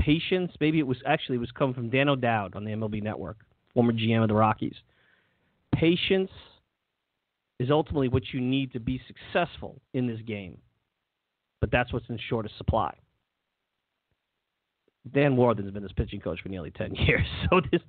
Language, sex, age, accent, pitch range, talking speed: English, male, 40-59, American, 125-210 Hz, 170 wpm